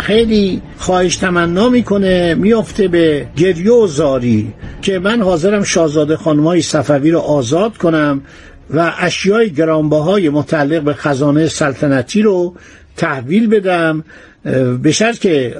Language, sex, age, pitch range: Persian, male, 60-79, 155-205 Hz